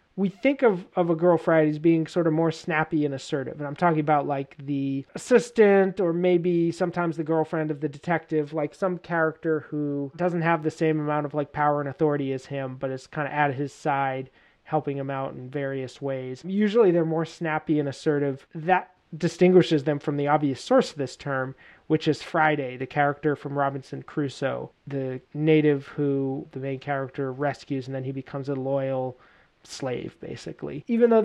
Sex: male